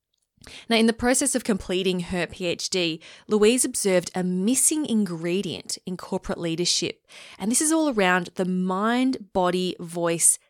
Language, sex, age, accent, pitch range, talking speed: English, female, 20-39, Australian, 175-220 Hz, 145 wpm